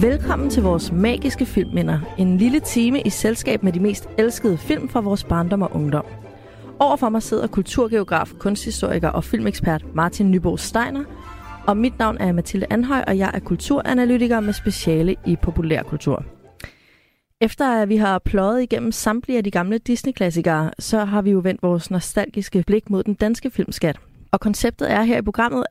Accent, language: native, Danish